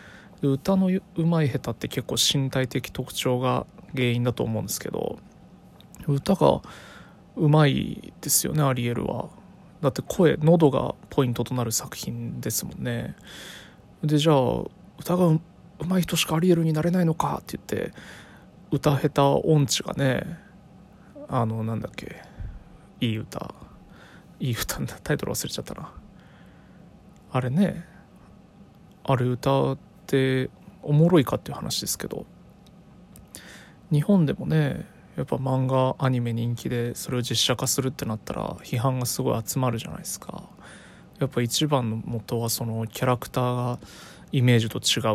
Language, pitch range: Japanese, 125-175 Hz